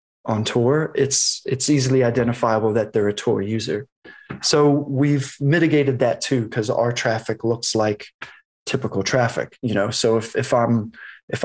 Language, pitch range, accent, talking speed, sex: English, 115-140 Hz, American, 155 wpm, male